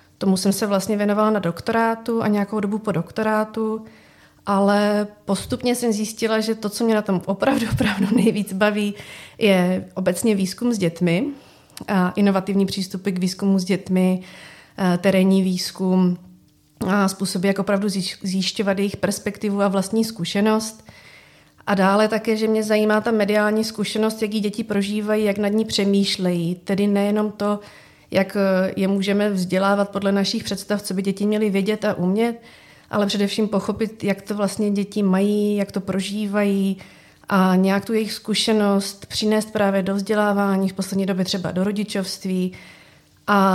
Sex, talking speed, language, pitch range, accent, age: female, 155 wpm, Czech, 195-215 Hz, native, 30-49